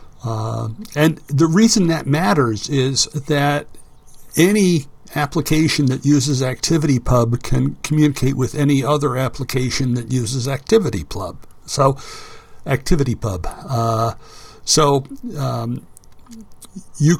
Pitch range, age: 120-150 Hz, 60-79